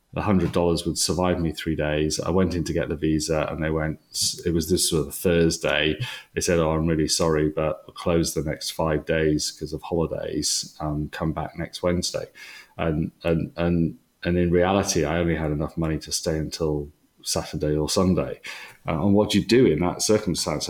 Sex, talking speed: male, 200 wpm